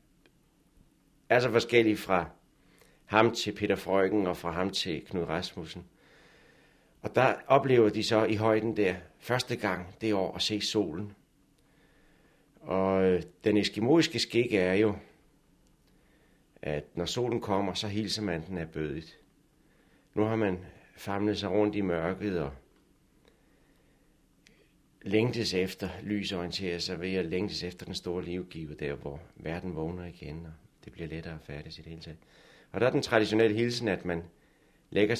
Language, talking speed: Danish, 145 wpm